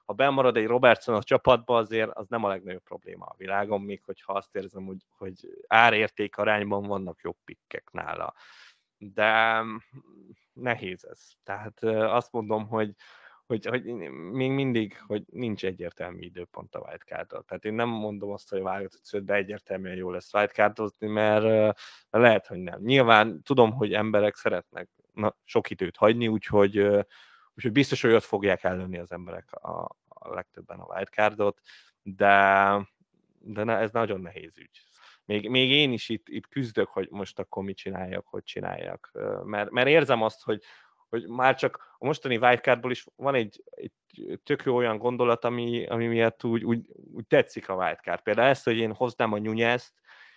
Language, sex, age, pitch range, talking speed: Hungarian, male, 20-39, 100-120 Hz, 160 wpm